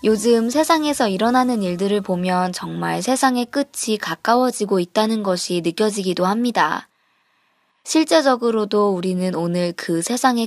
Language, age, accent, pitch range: Korean, 20-39, native, 185-255 Hz